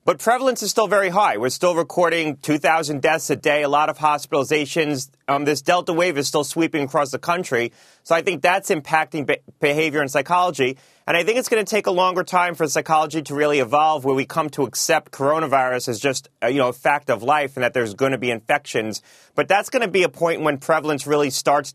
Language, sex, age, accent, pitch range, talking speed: English, male, 30-49, American, 135-170 Hz, 225 wpm